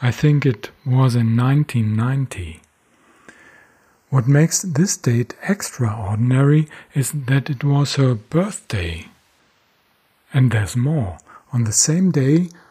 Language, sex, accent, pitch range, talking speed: English, male, German, 115-150 Hz, 115 wpm